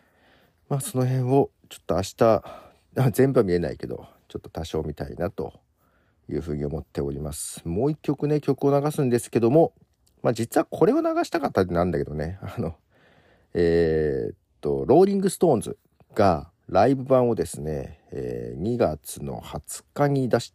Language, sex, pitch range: Japanese, male, 85-145 Hz